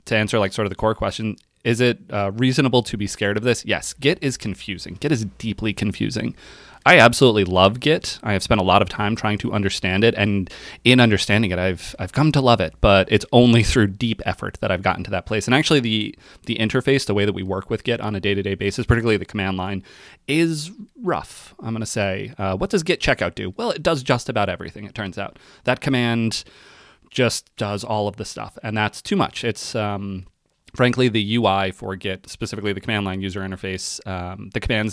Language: English